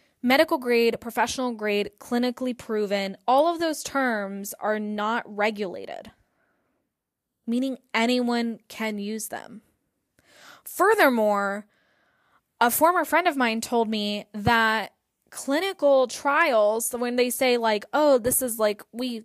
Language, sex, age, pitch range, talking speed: English, female, 10-29, 210-255 Hz, 120 wpm